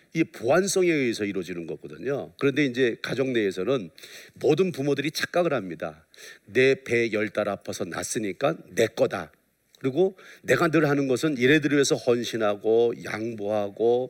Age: 50-69